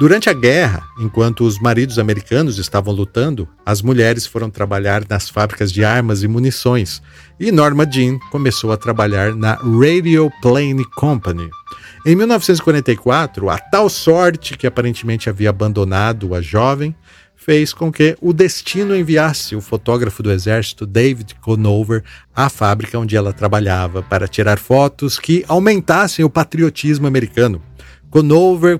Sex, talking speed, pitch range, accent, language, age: male, 140 wpm, 105-140 Hz, Brazilian, Portuguese, 50-69